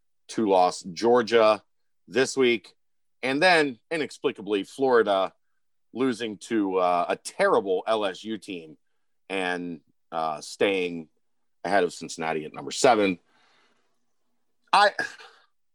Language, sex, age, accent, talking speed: English, male, 40-59, American, 100 wpm